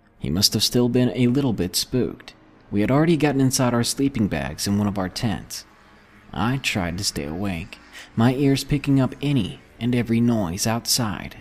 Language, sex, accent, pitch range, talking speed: English, male, American, 100-130 Hz, 190 wpm